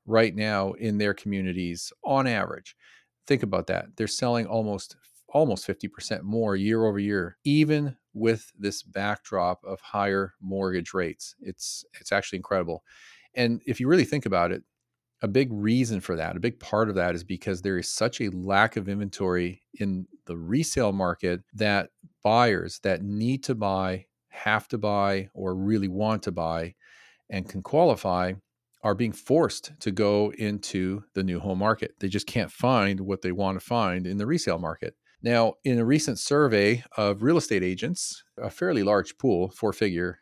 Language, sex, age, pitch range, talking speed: English, male, 40-59, 95-115 Hz, 170 wpm